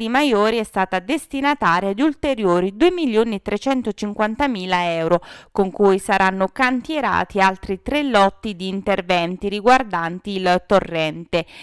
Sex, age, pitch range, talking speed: female, 20-39, 190-265 Hz, 105 wpm